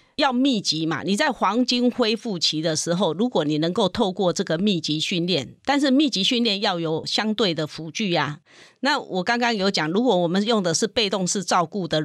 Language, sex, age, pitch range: Chinese, female, 40-59, 160-220 Hz